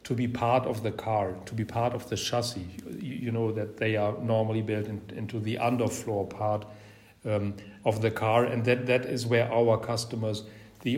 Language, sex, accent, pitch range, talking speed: English, male, German, 105-125 Hz, 200 wpm